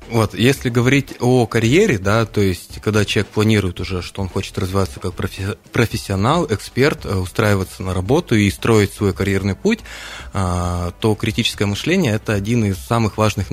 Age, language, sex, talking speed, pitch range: 20-39, Russian, male, 160 wpm, 95-115 Hz